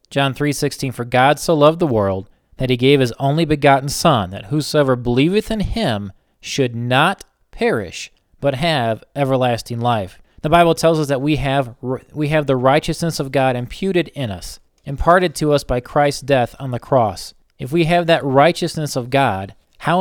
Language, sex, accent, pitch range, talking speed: English, male, American, 120-150 Hz, 185 wpm